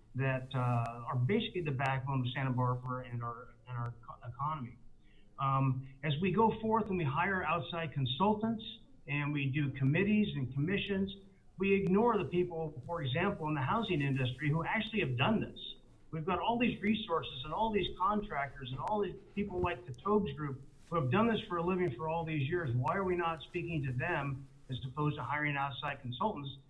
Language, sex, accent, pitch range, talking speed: English, male, American, 135-190 Hz, 195 wpm